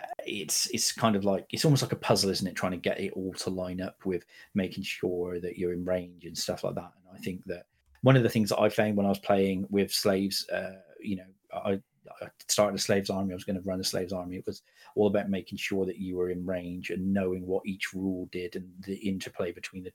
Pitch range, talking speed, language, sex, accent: 95-105 Hz, 260 wpm, English, male, British